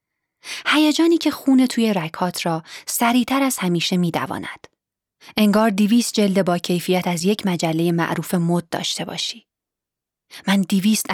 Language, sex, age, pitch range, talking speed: Persian, female, 30-49, 175-235 Hz, 135 wpm